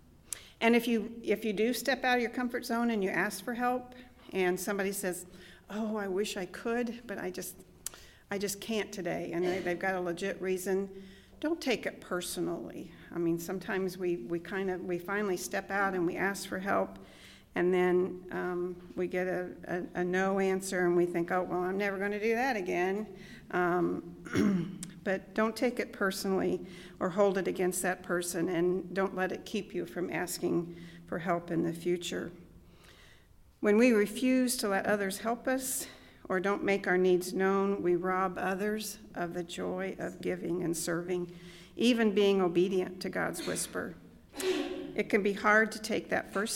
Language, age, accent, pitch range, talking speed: English, 50-69, American, 180-210 Hz, 185 wpm